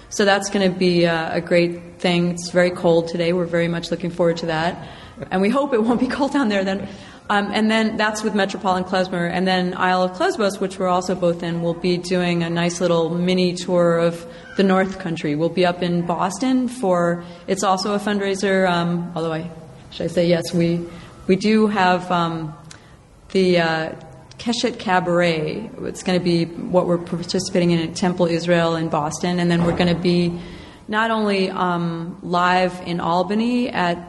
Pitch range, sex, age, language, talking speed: 170-190 Hz, female, 30-49, English, 200 wpm